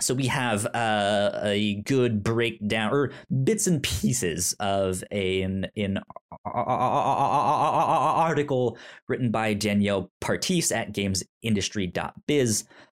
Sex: male